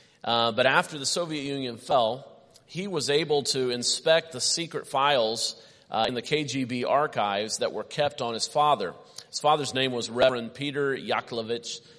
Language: English